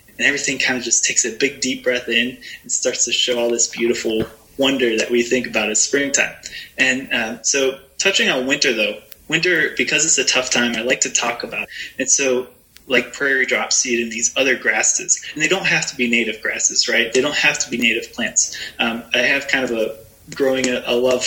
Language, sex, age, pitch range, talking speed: English, male, 20-39, 120-135 Hz, 225 wpm